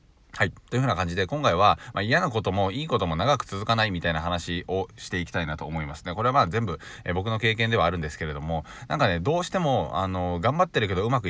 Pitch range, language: 90-120 Hz, Japanese